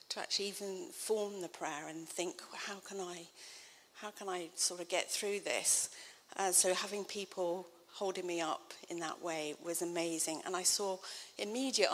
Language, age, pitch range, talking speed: English, 40-59, 170-195 Hz, 180 wpm